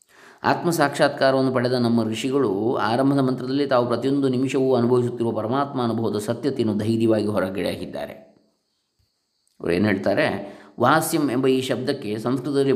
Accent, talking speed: native, 115 wpm